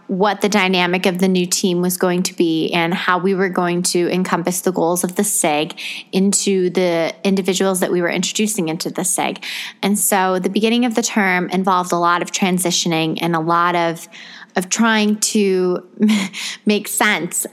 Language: English